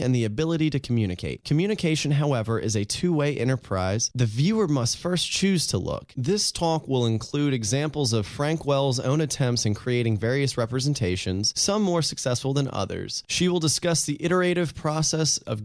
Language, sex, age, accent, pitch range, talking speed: English, male, 30-49, American, 115-155 Hz, 170 wpm